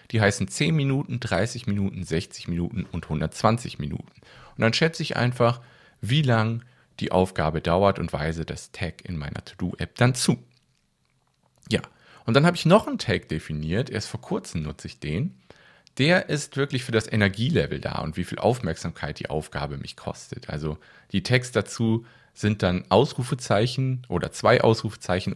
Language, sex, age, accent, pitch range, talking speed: German, male, 40-59, German, 85-125 Hz, 165 wpm